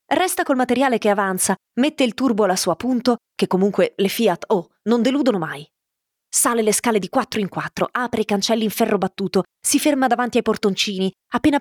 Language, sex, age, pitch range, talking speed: Italian, female, 20-39, 195-270 Hz, 195 wpm